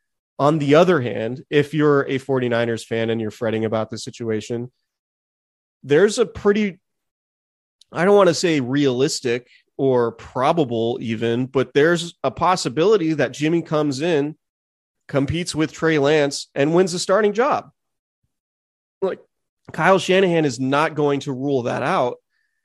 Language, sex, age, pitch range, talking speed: English, male, 30-49, 115-145 Hz, 145 wpm